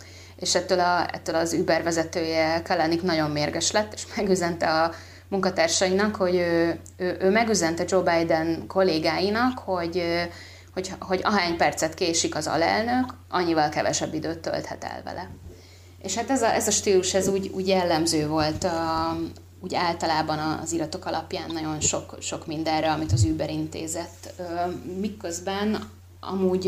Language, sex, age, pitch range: Hungarian, female, 20-39, 155-185 Hz